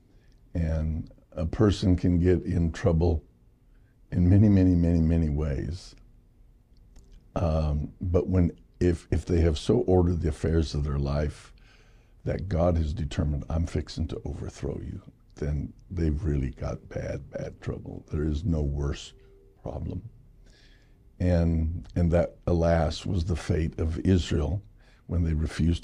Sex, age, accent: male, 60-79, American